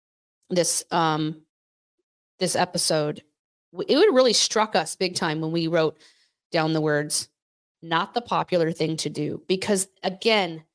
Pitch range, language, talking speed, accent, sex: 185-255 Hz, English, 140 wpm, American, female